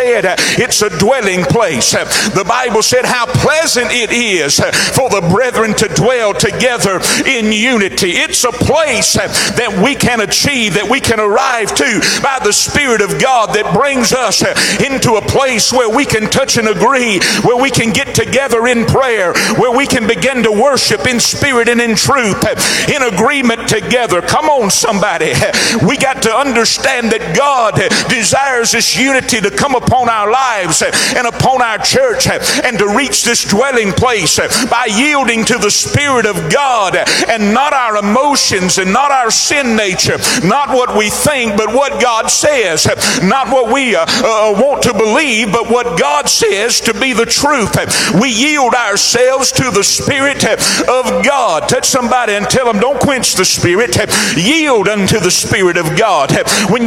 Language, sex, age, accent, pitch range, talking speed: English, male, 60-79, American, 215-265 Hz, 170 wpm